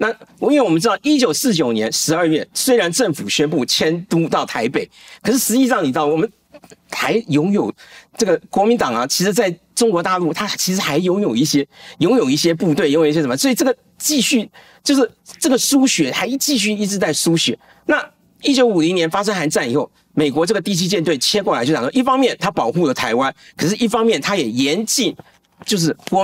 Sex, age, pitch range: male, 50-69, 155-240 Hz